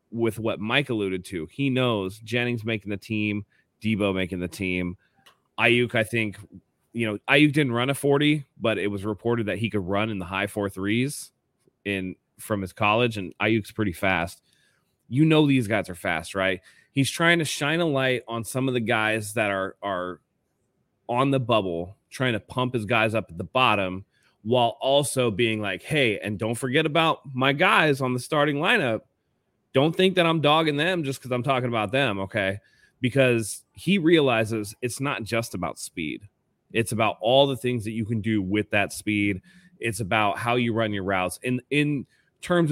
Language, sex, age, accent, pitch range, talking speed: English, male, 30-49, American, 105-135 Hz, 190 wpm